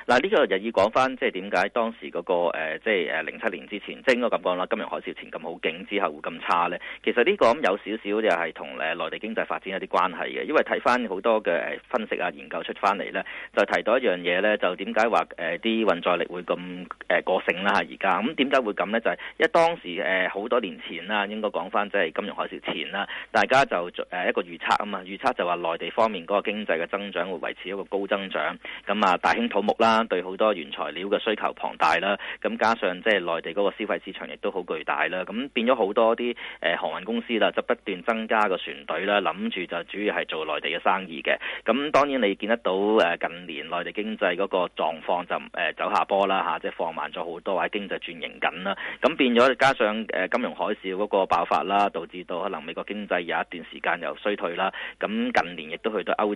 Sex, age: male, 30-49